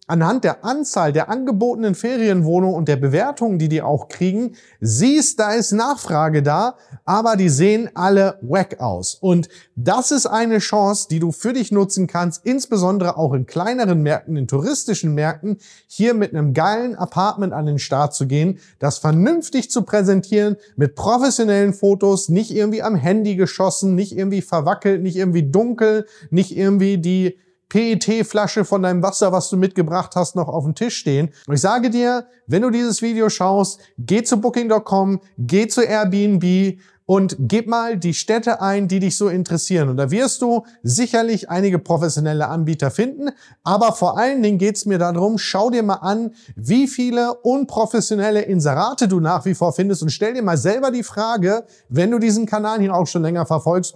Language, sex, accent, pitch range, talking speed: German, male, German, 175-220 Hz, 175 wpm